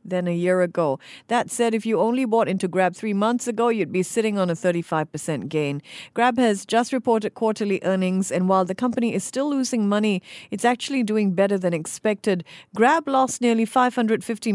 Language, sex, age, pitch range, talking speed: English, female, 50-69, 180-235 Hz, 190 wpm